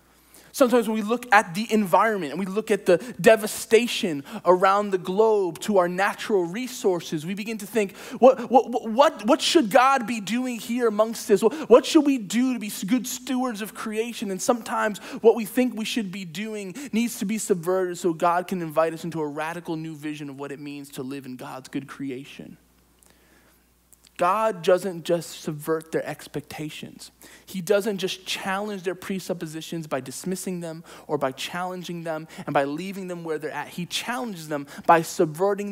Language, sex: English, male